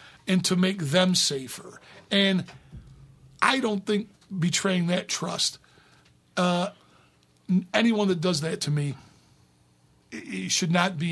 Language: English